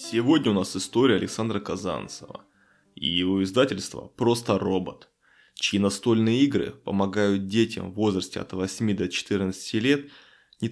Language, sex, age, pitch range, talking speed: Russian, male, 20-39, 100-120 Hz, 135 wpm